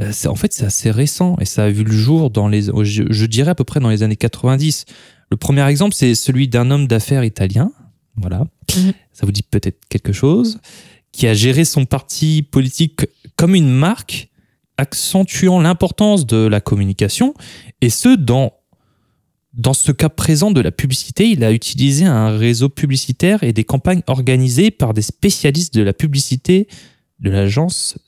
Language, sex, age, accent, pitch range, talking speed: French, male, 20-39, French, 115-155 Hz, 170 wpm